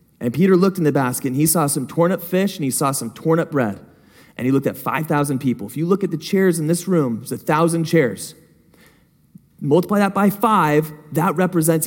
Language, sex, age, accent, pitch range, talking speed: English, male, 20-39, American, 135-185 Hz, 220 wpm